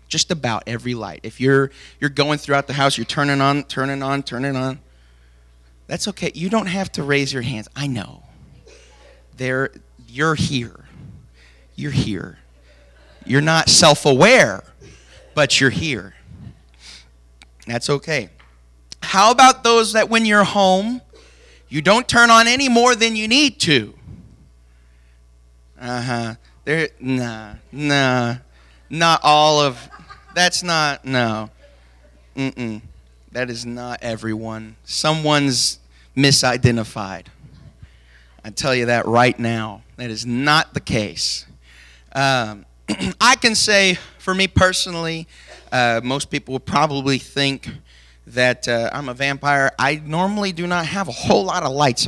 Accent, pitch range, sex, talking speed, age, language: American, 100-150 Hz, male, 135 wpm, 30-49, English